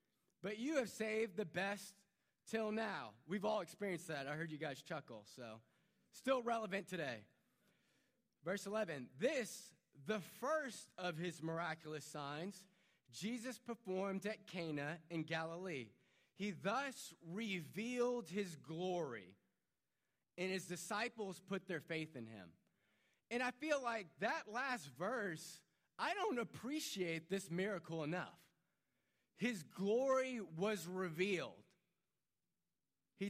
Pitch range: 155-210 Hz